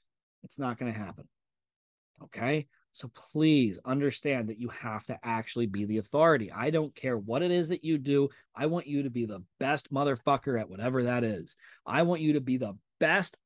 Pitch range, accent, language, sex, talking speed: 130-210 Hz, American, English, male, 200 wpm